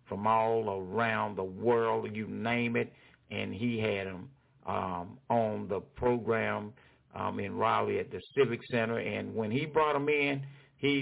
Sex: male